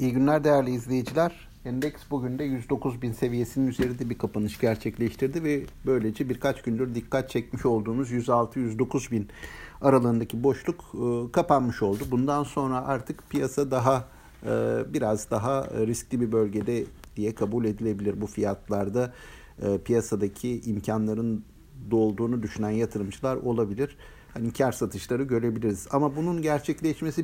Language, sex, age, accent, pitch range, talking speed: Turkish, male, 60-79, native, 115-145 Hz, 120 wpm